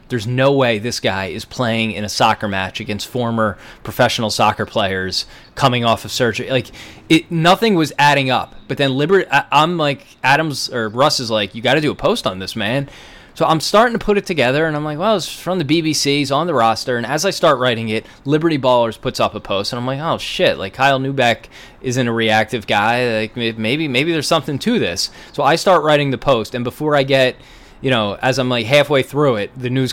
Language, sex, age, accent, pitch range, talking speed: English, male, 20-39, American, 115-140 Hz, 235 wpm